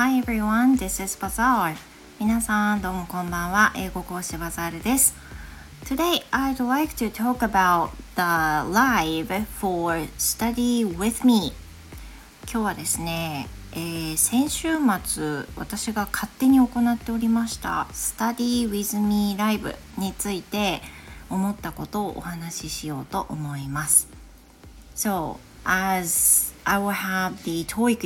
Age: 40-59